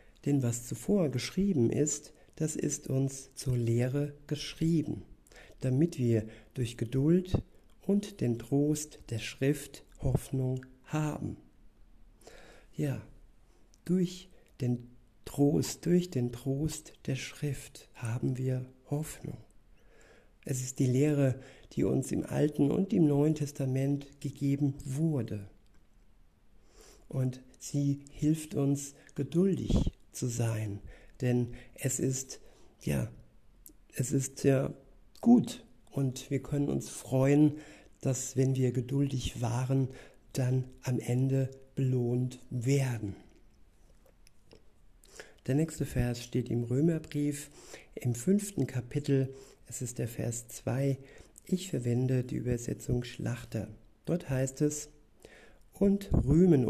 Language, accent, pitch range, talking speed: German, German, 125-145 Hz, 110 wpm